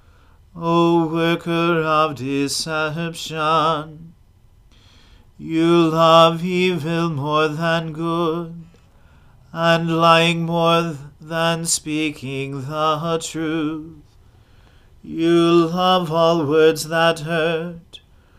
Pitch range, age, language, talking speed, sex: 155-170 Hz, 40-59, English, 75 wpm, male